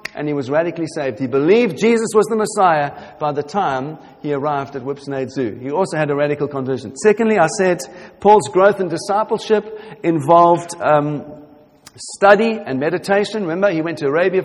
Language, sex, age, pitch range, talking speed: English, male, 40-59, 150-200 Hz, 175 wpm